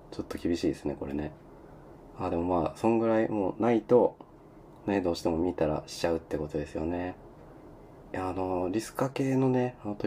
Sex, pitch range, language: male, 80-105 Hz, Japanese